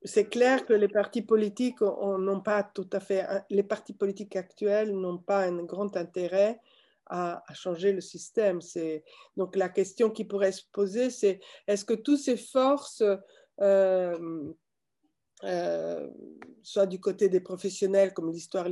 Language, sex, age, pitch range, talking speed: French, female, 50-69, 185-210 Hz, 155 wpm